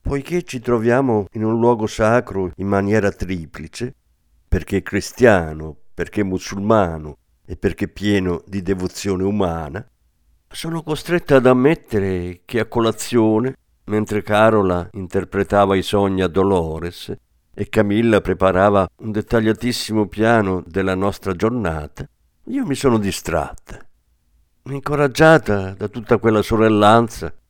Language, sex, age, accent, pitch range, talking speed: Italian, male, 50-69, native, 85-115 Hz, 115 wpm